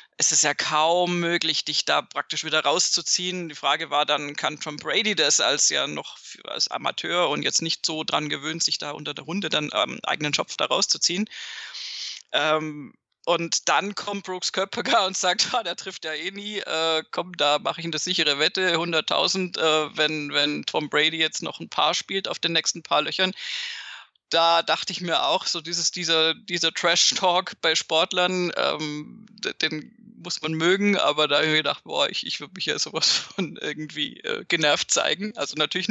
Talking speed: 190 wpm